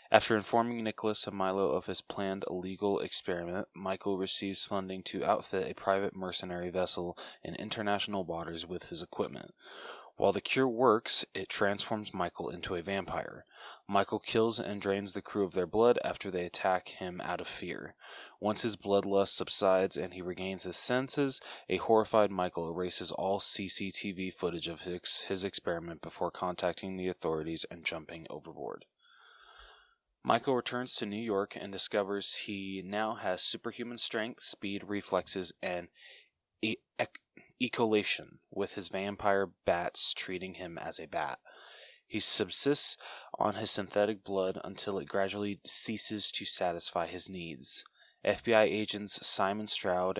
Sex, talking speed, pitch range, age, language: male, 145 wpm, 90-105 Hz, 20-39, English